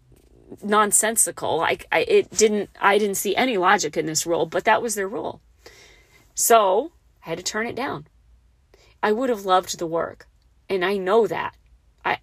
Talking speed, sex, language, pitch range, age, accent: 175 wpm, female, English, 180-230 Hz, 40-59, American